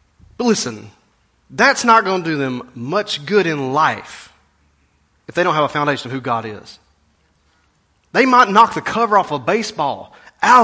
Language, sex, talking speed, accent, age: English, male, 175 wpm, American, 30-49